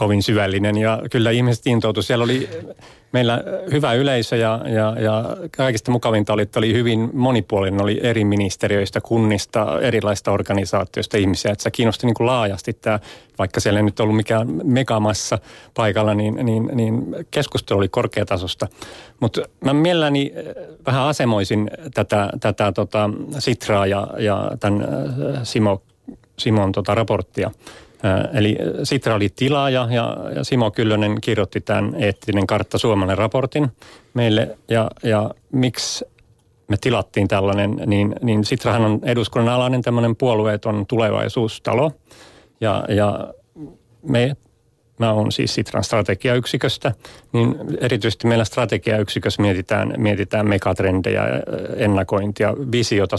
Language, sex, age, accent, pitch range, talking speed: Finnish, male, 30-49, native, 105-125 Hz, 125 wpm